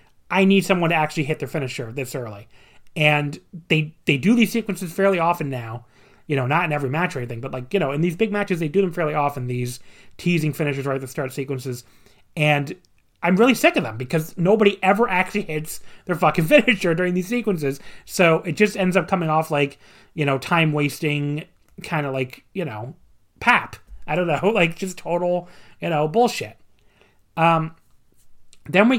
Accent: American